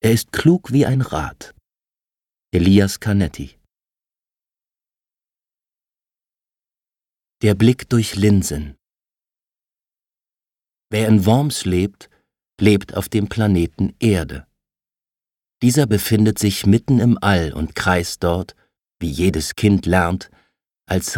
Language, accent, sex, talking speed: German, German, male, 100 wpm